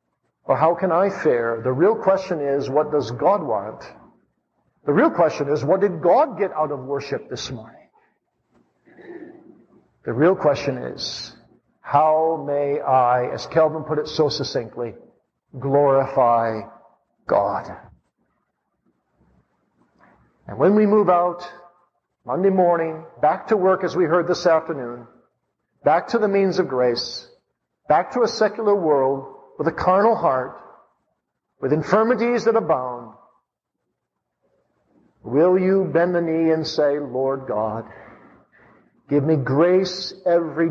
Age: 50-69